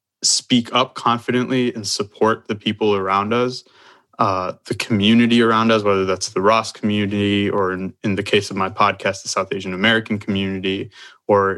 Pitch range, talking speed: 100-115 Hz, 170 wpm